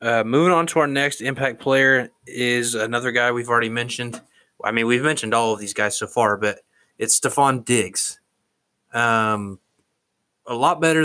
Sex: male